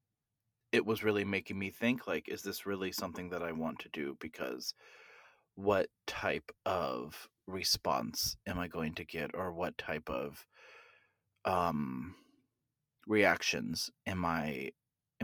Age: 30-49